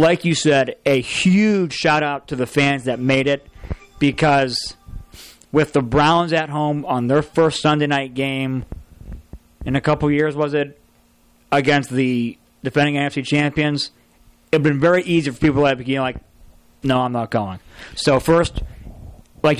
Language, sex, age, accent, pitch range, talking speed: English, male, 40-59, American, 130-155 Hz, 170 wpm